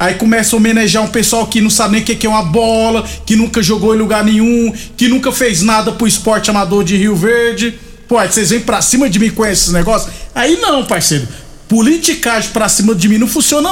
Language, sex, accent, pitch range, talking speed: Portuguese, male, Brazilian, 185-230 Hz, 230 wpm